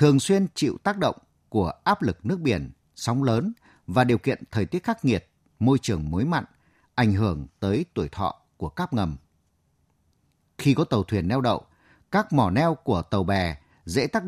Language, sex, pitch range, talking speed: Vietnamese, male, 100-150 Hz, 190 wpm